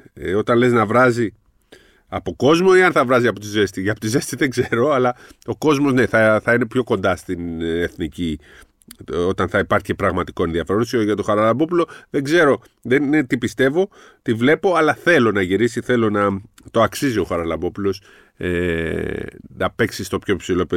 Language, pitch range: Greek, 110-135 Hz